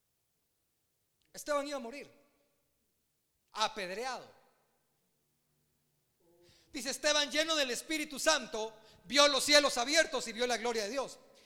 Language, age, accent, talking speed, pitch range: Spanish, 40-59, Mexican, 110 wpm, 175-270 Hz